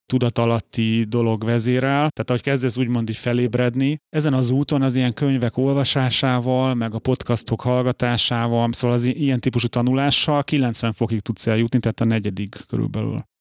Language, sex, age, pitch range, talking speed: Hungarian, male, 30-49, 115-135 Hz, 150 wpm